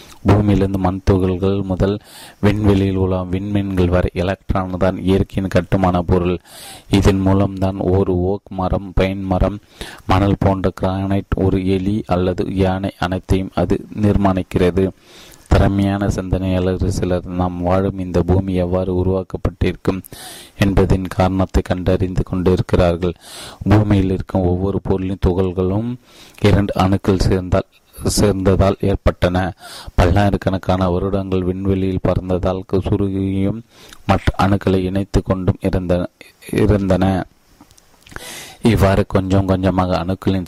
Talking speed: 60 wpm